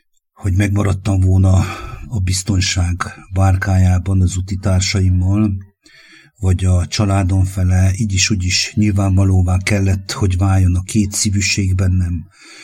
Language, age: English, 50-69